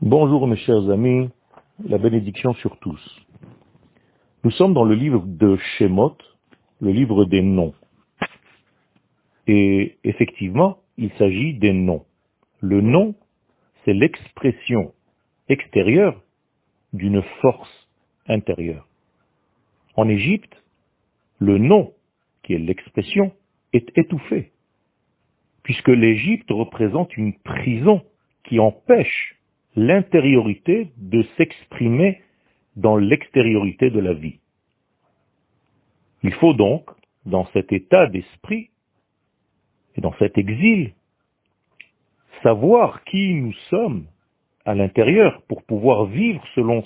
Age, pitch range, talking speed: 50-69, 105-165 Hz, 100 wpm